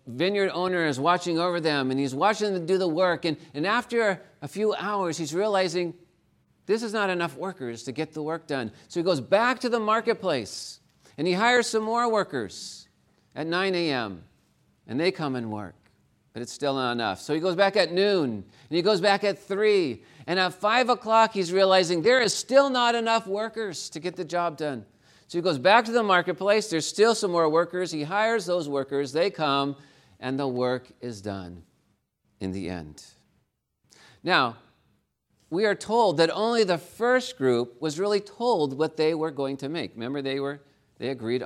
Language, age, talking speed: English, 40-59, 195 wpm